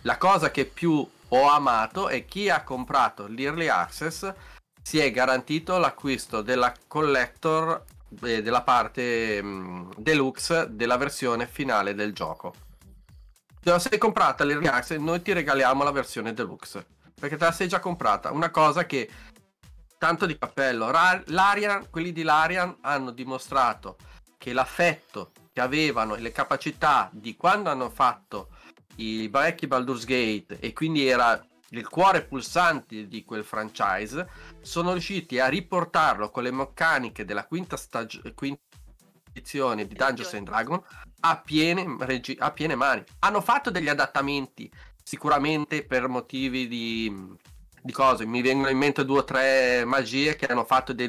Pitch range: 125-160 Hz